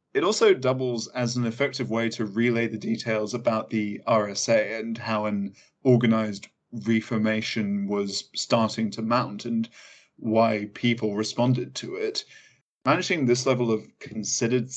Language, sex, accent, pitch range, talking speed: English, male, British, 110-125 Hz, 140 wpm